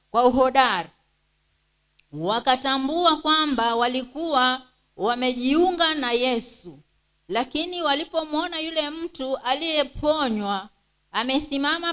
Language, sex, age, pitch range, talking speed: Swahili, female, 50-69, 240-305 Hz, 70 wpm